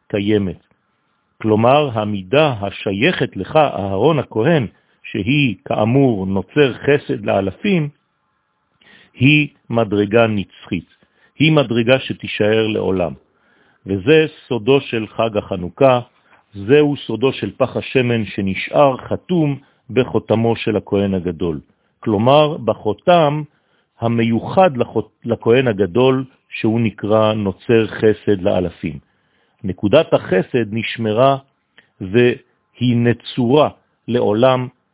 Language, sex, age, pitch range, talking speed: French, male, 50-69, 105-135 Hz, 85 wpm